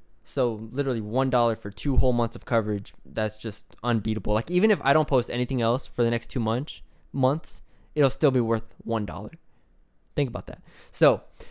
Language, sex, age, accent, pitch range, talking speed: English, male, 20-39, American, 115-150 Hz, 185 wpm